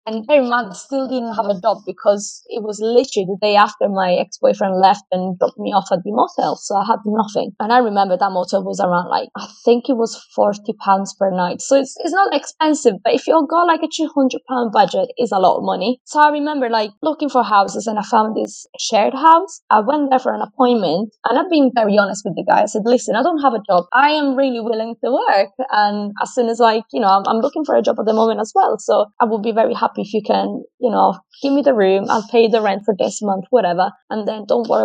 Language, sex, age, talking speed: English, female, 20-39, 260 wpm